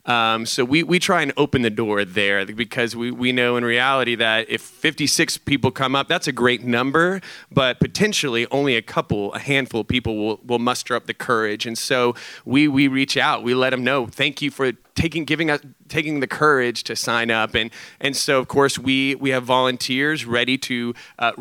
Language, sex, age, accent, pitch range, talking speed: English, male, 30-49, American, 120-145 Hz, 205 wpm